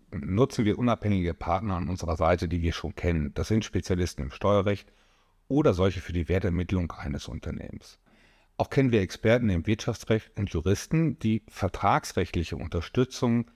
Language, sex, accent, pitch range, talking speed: German, male, German, 85-115 Hz, 150 wpm